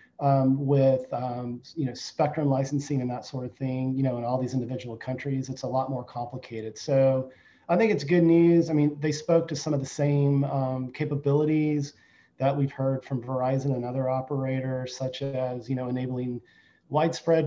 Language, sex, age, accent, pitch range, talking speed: English, male, 30-49, American, 125-145 Hz, 190 wpm